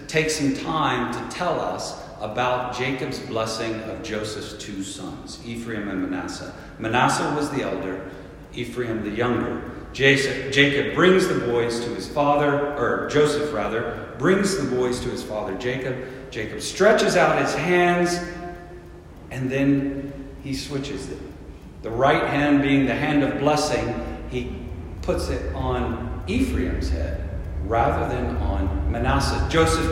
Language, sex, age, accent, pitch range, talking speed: English, male, 50-69, American, 90-145 Hz, 140 wpm